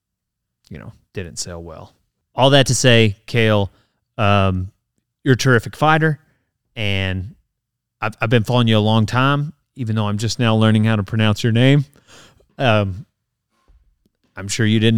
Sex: male